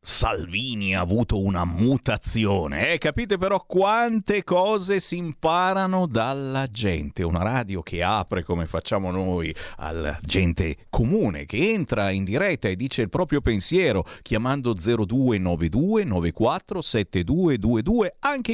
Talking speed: 125 wpm